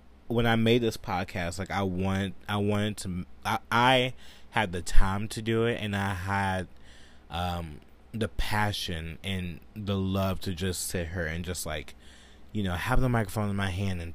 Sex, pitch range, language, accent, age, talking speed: male, 80-105 Hz, English, American, 20-39, 185 wpm